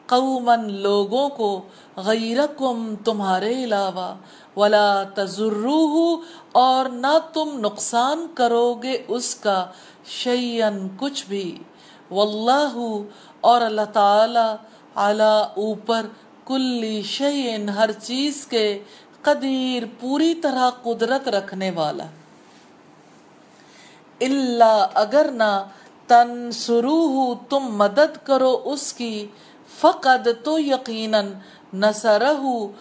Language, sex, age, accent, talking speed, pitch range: English, female, 50-69, Indian, 75 wpm, 215-265 Hz